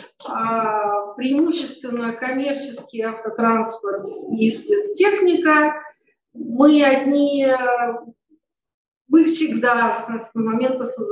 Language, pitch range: Russian, 210-285 Hz